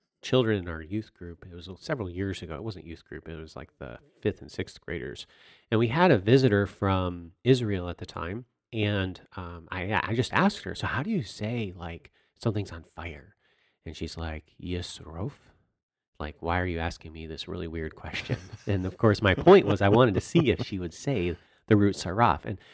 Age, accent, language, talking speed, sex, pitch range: 30-49, American, English, 215 wpm, male, 85-110 Hz